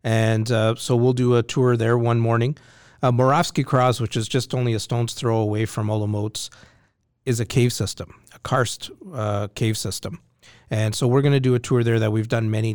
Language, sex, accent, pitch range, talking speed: English, male, American, 105-120 Hz, 210 wpm